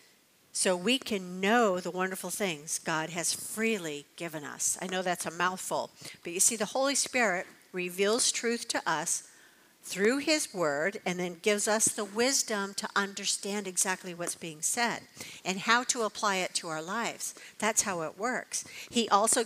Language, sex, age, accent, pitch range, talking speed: English, female, 50-69, American, 180-240 Hz, 175 wpm